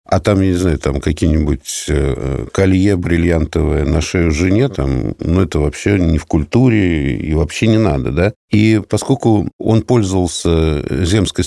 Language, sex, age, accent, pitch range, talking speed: Russian, male, 60-79, native, 80-110 Hz, 150 wpm